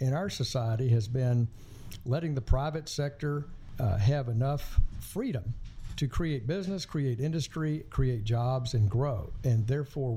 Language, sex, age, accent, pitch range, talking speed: English, male, 60-79, American, 110-140 Hz, 140 wpm